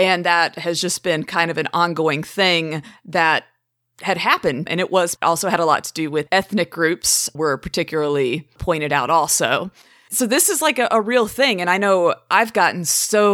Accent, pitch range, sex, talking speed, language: American, 165-210 Hz, female, 200 wpm, English